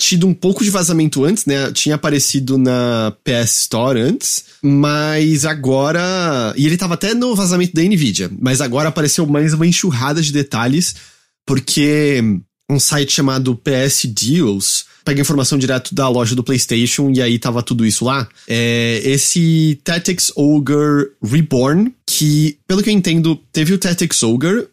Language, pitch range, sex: English, 130-170 Hz, male